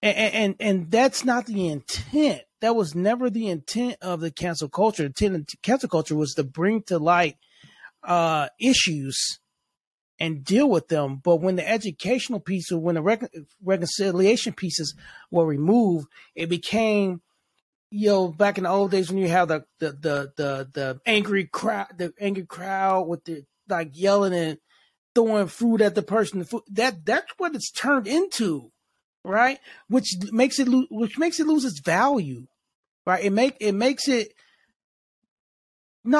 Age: 30-49